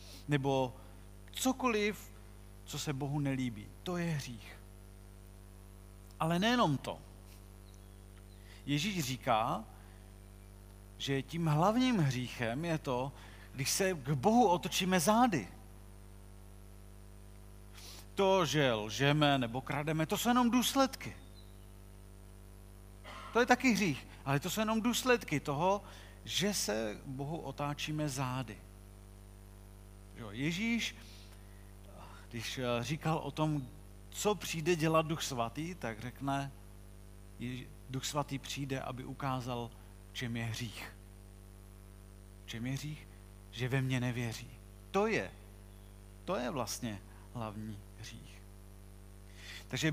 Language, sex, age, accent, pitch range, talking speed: Czech, male, 40-59, native, 110-150 Hz, 100 wpm